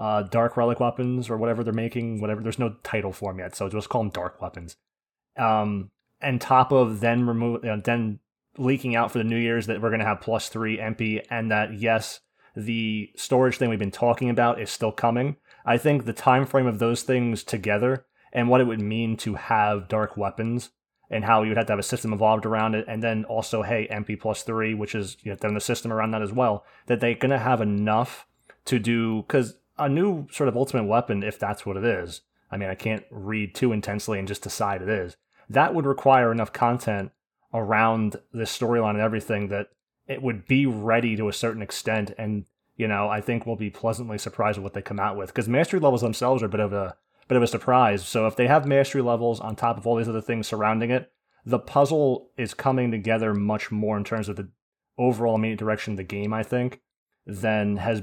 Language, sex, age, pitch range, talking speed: English, male, 20-39, 105-120 Hz, 225 wpm